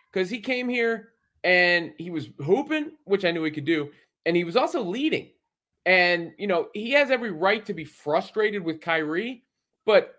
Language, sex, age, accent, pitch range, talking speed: English, male, 30-49, American, 145-205 Hz, 190 wpm